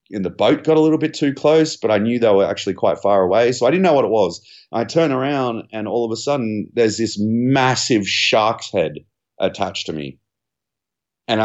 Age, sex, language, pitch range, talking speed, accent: 30-49, male, English, 95-125 Hz, 220 wpm, Australian